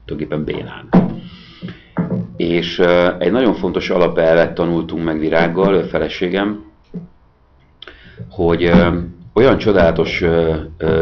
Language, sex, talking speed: Hungarian, male, 100 wpm